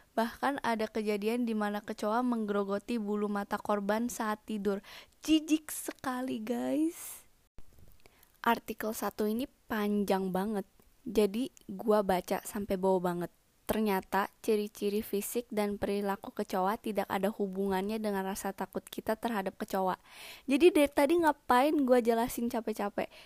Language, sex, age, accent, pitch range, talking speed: Indonesian, female, 20-39, native, 205-245 Hz, 125 wpm